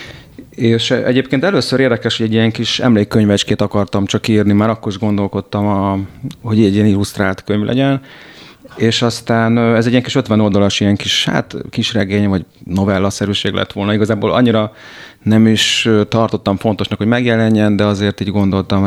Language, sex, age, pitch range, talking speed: Hungarian, male, 30-49, 100-115 Hz, 165 wpm